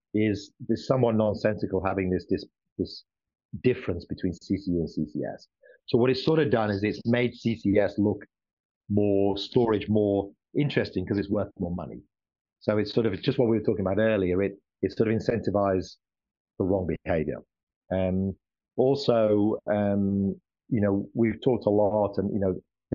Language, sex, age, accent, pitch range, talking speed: English, male, 40-59, British, 95-120 Hz, 165 wpm